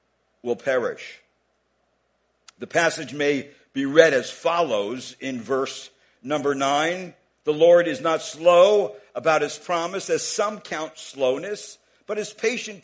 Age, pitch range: 60-79, 145-210 Hz